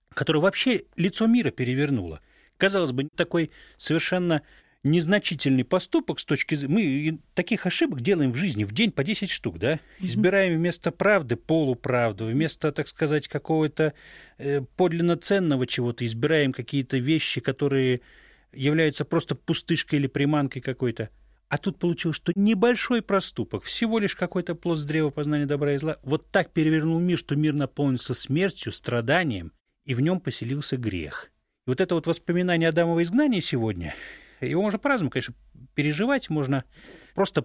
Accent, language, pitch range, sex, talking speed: native, Russian, 130-175 Hz, male, 145 wpm